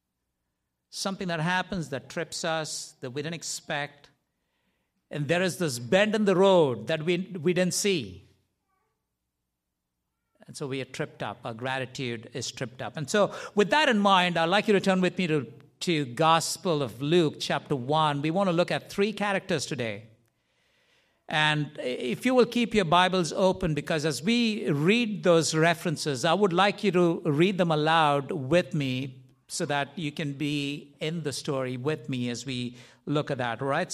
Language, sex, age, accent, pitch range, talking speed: English, male, 60-79, Indian, 140-185 Hz, 180 wpm